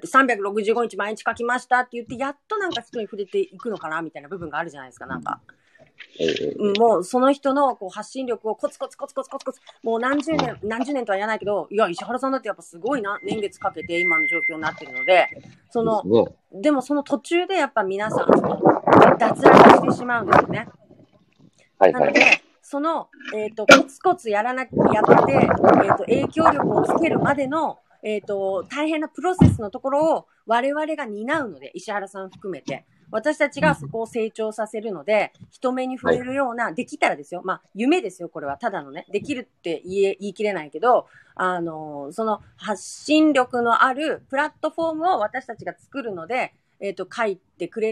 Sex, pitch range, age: female, 185-275 Hz, 30-49